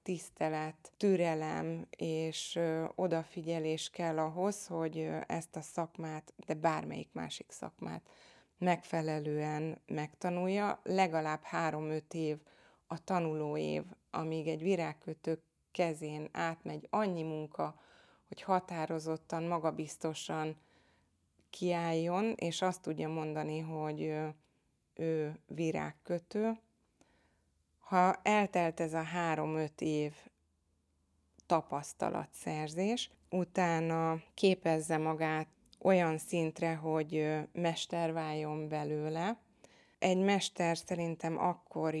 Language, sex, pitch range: Hungarian, female, 155-170 Hz